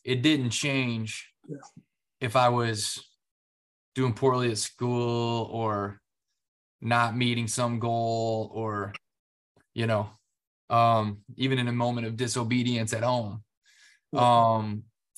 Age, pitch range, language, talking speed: 20-39, 110-120 Hz, English, 110 wpm